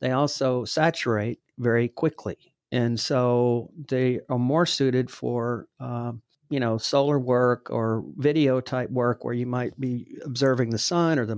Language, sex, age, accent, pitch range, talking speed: English, male, 50-69, American, 120-145 Hz, 160 wpm